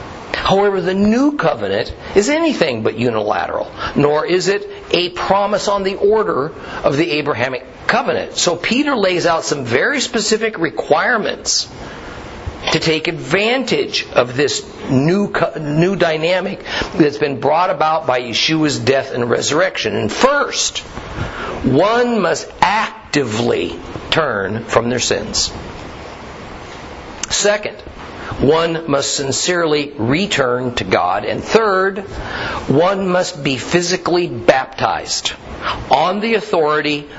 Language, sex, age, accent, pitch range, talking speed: English, male, 50-69, American, 140-200 Hz, 115 wpm